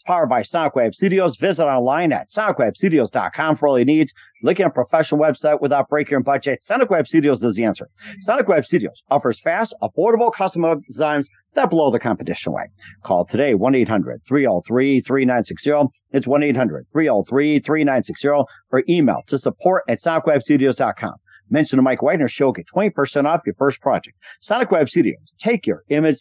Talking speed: 165 wpm